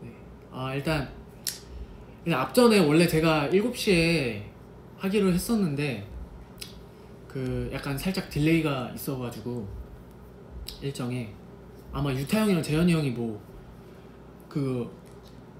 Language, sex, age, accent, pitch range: Korean, male, 20-39, native, 110-155 Hz